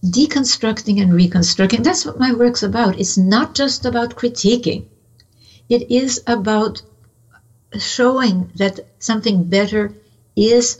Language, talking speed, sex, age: English, 115 wpm, female, 60-79